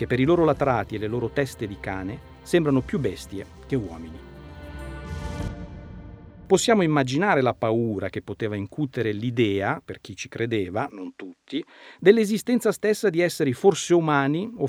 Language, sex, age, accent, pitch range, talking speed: Italian, male, 50-69, native, 105-170 Hz, 150 wpm